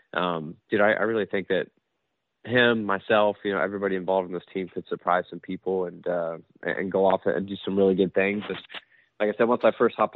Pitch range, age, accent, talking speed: 95-105 Hz, 20-39, American, 230 wpm